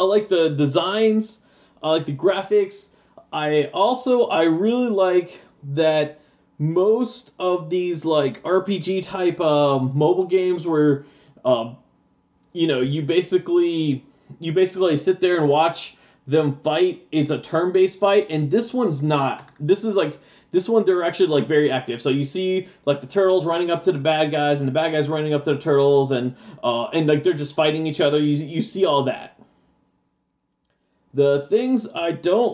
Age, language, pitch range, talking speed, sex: 20-39, English, 140-185 Hz, 175 wpm, male